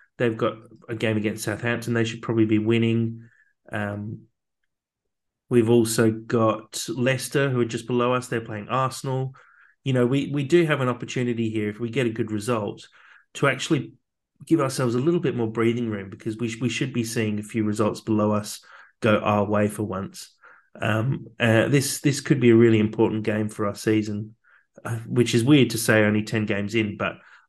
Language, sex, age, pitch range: English, male, 30-49, 110-125 Hz